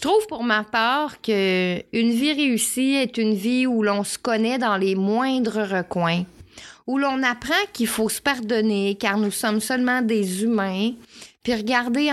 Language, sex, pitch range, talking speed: French, female, 205-265 Hz, 170 wpm